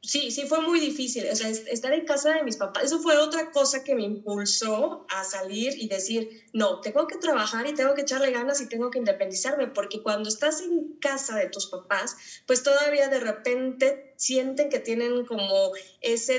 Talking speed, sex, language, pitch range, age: 200 wpm, female, Spanish, 210-275 Hz, 20-39